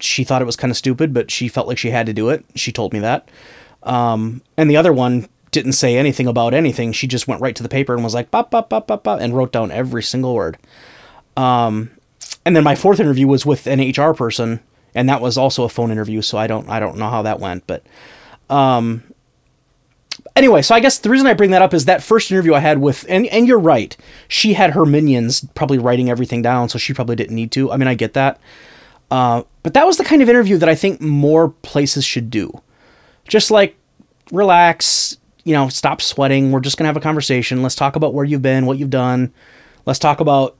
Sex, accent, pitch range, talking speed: male, American, 120-155 Hz, 230 wpm